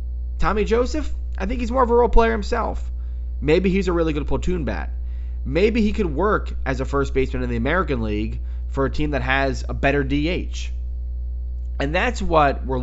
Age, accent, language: 30-49, American, English